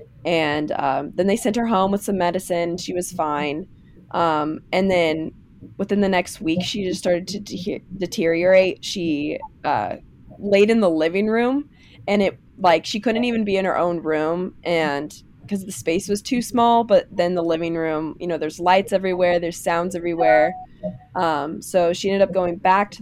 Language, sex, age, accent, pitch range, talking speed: English, female, 20-39, American, 165-200 Hz, 185 wpm